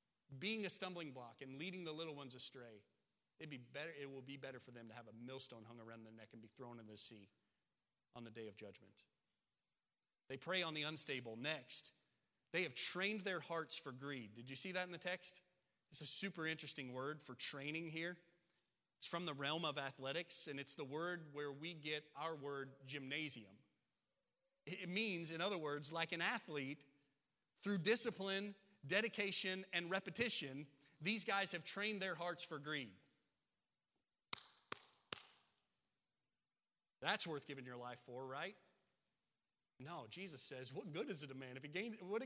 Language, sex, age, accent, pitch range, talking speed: English, male, 30-49, American, 135-180 Hz, 175 wpm